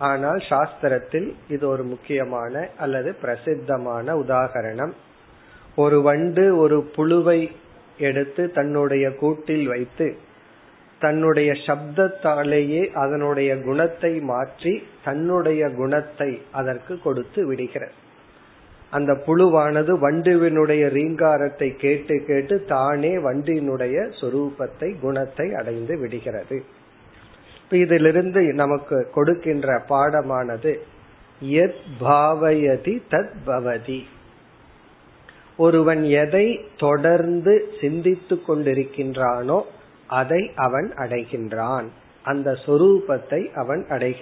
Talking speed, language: 55 wpm, Tamil